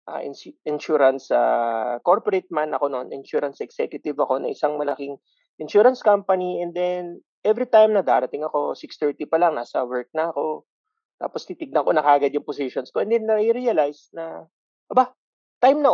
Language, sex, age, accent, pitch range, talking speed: Filipino, male, 30-49, native, 155-255 Hz, 160 wpm